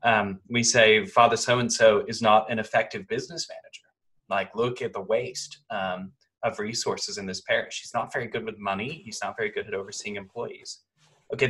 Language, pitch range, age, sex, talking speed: English, 115-155 Hz, 20-39, male, 190 wpm